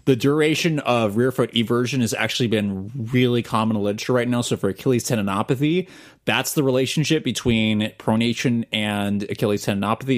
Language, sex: English, male